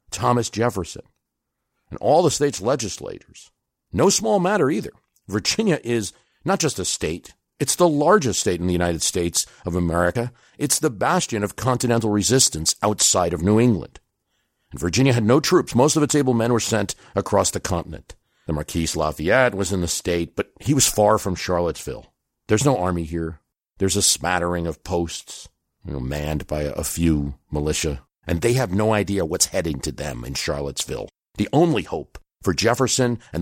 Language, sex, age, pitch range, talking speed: English, male, 50-69, 80-115 Hz, 175 wpm